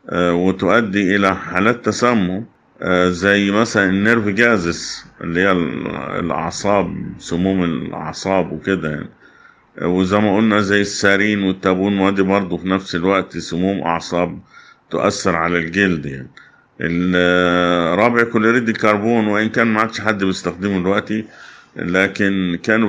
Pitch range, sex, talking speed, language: 90-105 Hz, male, 115 wpm, Arabic